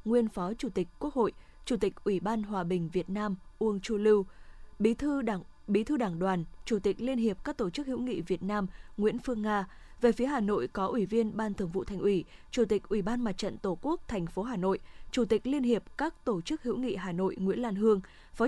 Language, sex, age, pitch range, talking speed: Vietnamese, female, 20-39, 195-240 Hz, 250 wpm